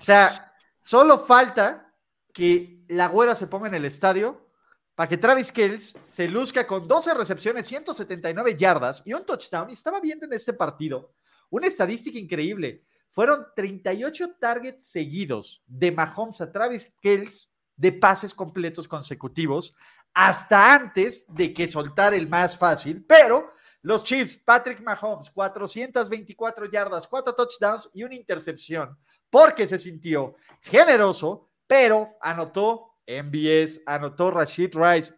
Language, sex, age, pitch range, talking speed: Spanish, male, 40-59, 175-245 Hz, 135 wpm